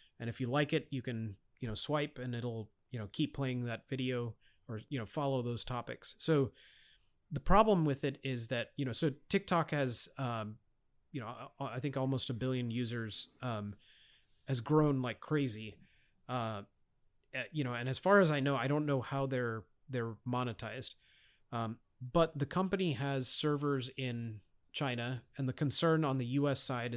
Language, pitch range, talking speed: English, 115-145 Hz, 180 wpm